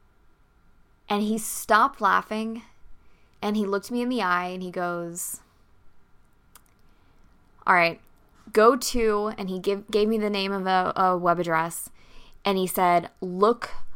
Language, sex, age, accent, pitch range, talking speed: English, female, 20-39, American, 175-230 Hz, 145 wpm